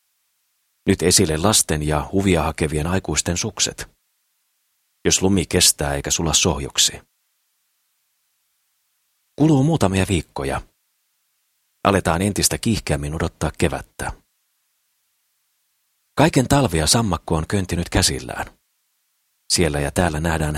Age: 40-59